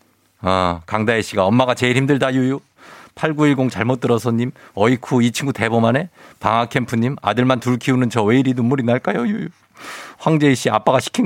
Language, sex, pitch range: Korean, male, 125-160 Hz